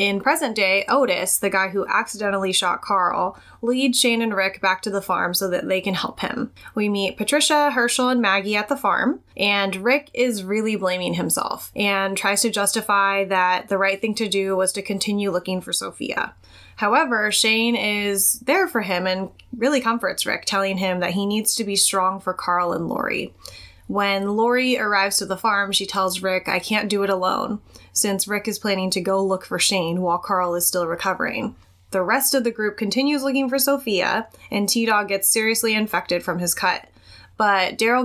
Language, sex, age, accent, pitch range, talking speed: English, female, 10-29, American, 190-230 Hz, 195 wpm